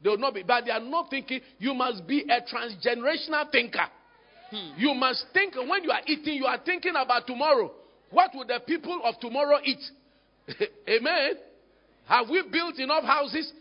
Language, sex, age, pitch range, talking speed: English, male, 50-69, 260-360 Hz, 175 wpm